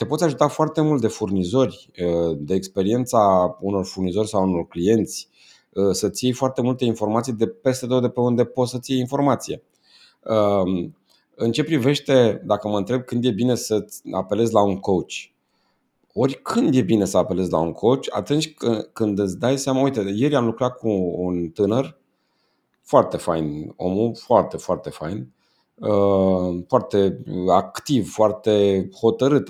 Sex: male